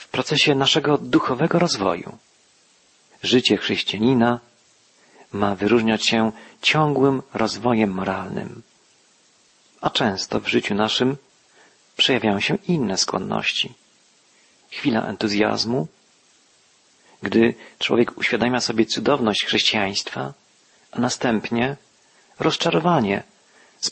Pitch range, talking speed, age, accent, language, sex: 110-145 Hz, 85 wpm, 40-59, native, Polish, male